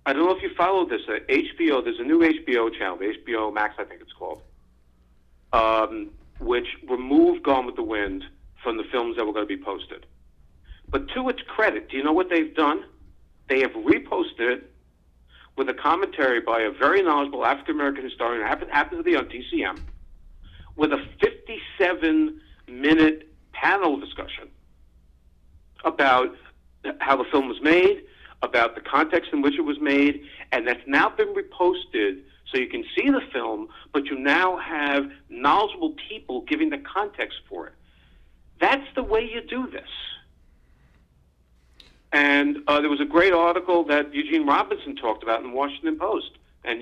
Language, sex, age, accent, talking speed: English, male, 50-69, American, 165 wpm